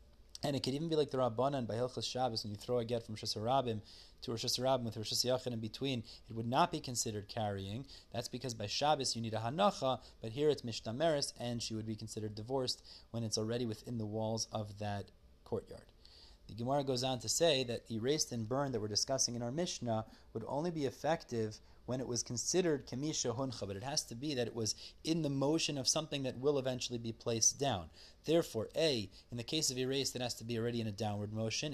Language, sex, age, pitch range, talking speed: English, male, 30-49, 110-135 Hz, 225 wpm